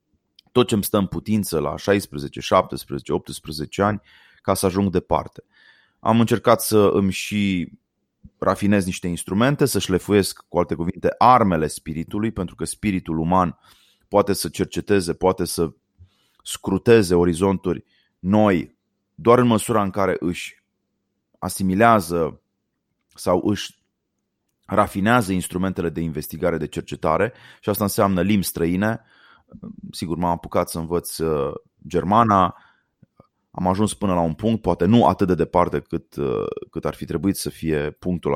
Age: 30-49